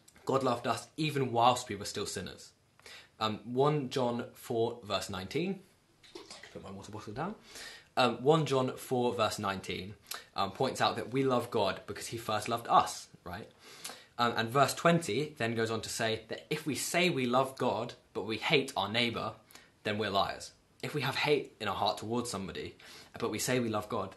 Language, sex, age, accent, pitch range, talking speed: English, male, 20-39, British, 115-140 Hz, 200 wpm